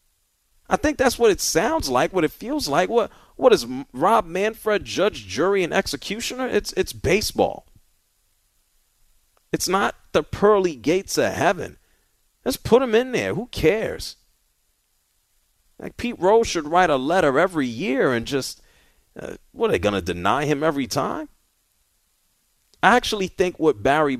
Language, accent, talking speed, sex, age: English, American, 155 wpm, male, 40-59